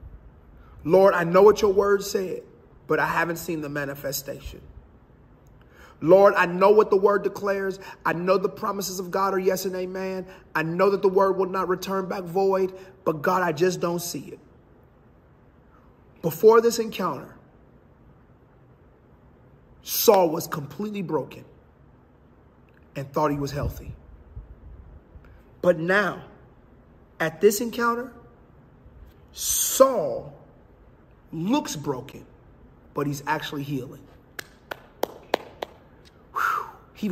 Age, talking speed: 30-49, 115 wpm